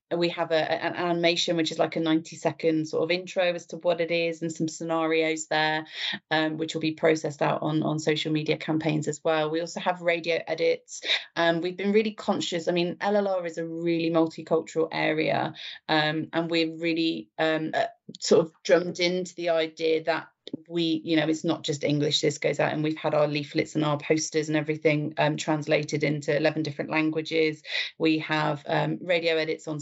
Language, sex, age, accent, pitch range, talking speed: English, female, 30-49, British, 155-165 Hz, 200 wpm